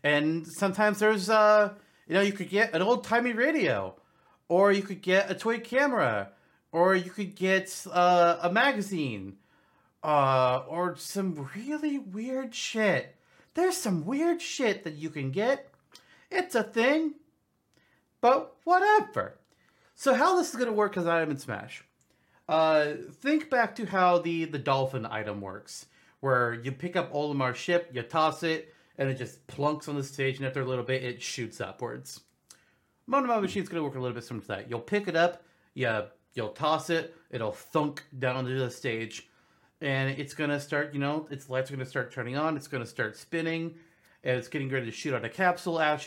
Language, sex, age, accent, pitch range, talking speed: English, male, 40-59, American, 135-210 Hz, 190 wpm